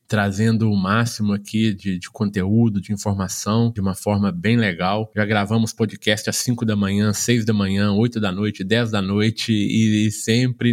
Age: 20-39